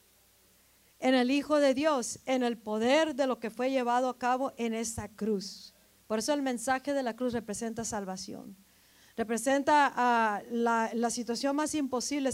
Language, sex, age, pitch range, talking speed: Spanish, female, 40-59, 205-255 Hz, 165 wpm